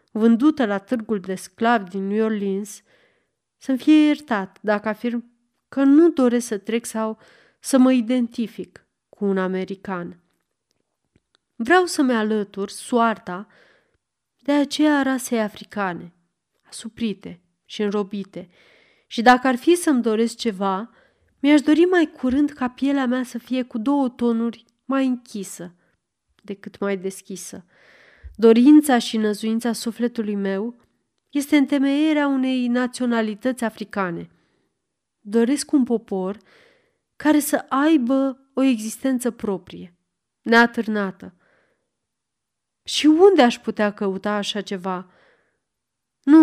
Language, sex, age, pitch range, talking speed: Romanian, female, 30-49, 205-265 Hz, 115 wpm